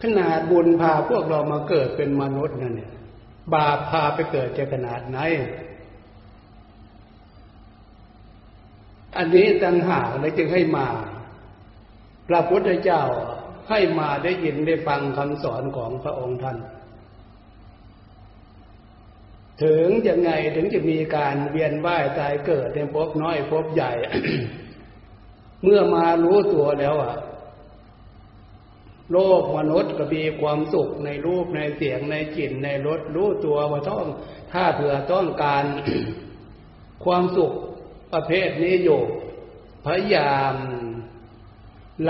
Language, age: Thai, 60-79